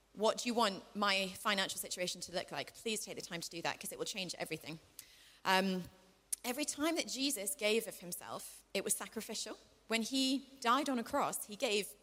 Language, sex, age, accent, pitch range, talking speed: English, female, 30-49, British, 185-245 Hz, 205 wpm